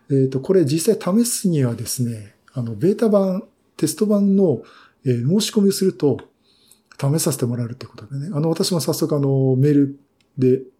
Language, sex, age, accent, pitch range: Japanese, male, 50-69, native, 120-160 Hz